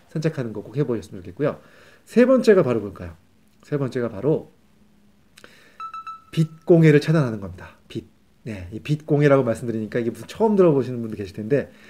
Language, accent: Korean, native